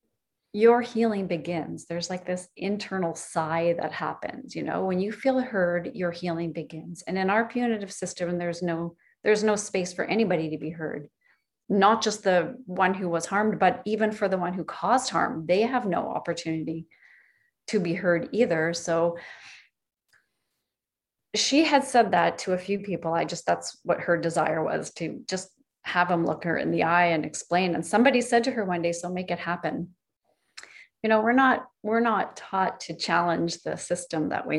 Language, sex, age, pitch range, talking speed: English, female, 30-49, 170-215 Hz, 185 wpm